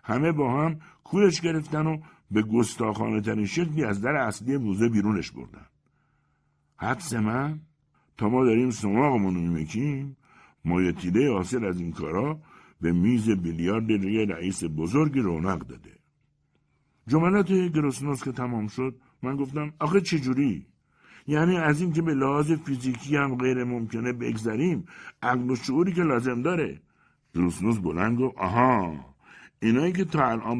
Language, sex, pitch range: Persian, male, 100-150 Hz